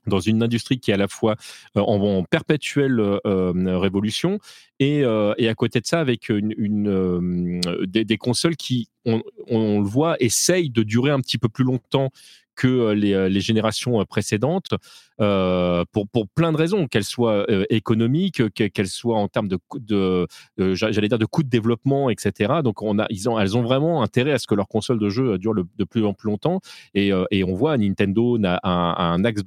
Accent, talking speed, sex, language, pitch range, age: French, 205 wpm, male, French, 100-130 Hz, 30-49